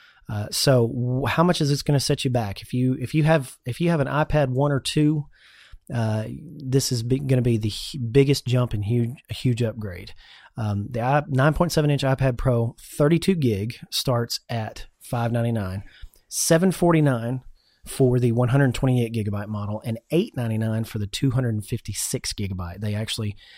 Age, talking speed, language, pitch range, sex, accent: 30-49, 205 wpm, English, 105-135 Hz, male, American